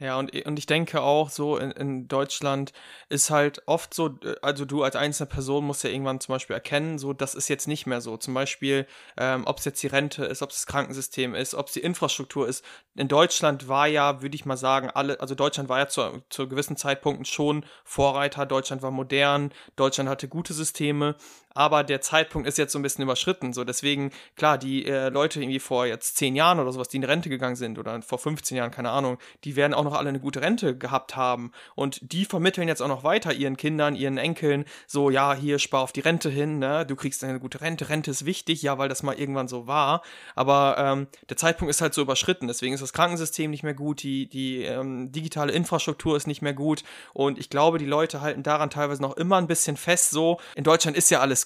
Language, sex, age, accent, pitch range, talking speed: German, male, 30-49, German, 135-150 Hz, 230 wpm